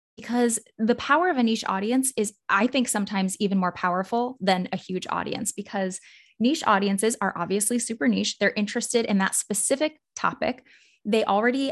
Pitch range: 190-235 Hz